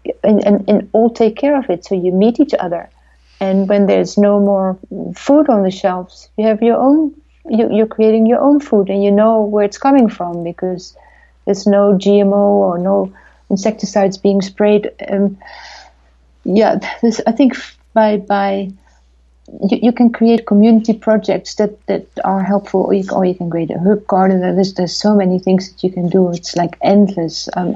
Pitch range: 180-205 Hz